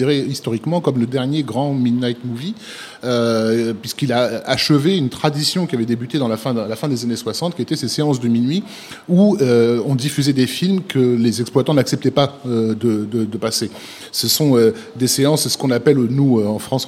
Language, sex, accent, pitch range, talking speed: French, male, French, 115-145 Hz, 205 wpm